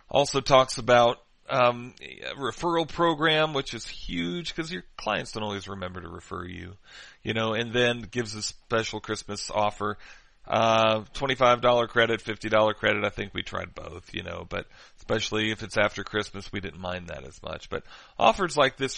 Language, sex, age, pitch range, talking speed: English, male, 40-59, 105-125 Hz, 175 wpm